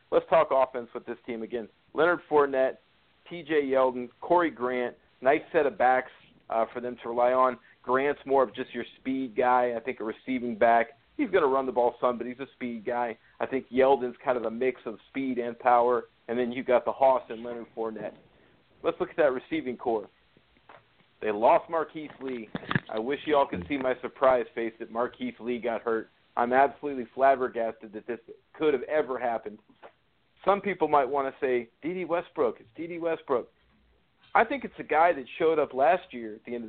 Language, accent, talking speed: English, American, 205 wpm